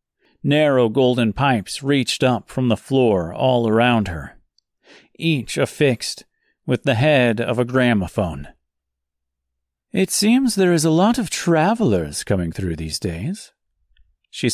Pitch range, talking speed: 95-150 Hz, 130 wpm